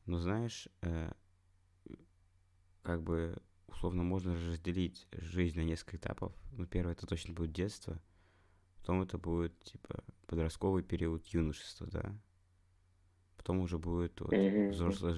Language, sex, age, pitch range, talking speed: Russian, male, 20-39, 85-95 Hz, 120 wpm